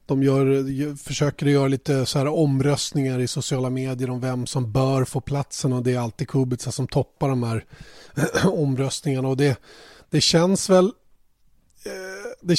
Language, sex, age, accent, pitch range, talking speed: Swedish, male, 30-49, native, 130-150 Hz, 155 wpm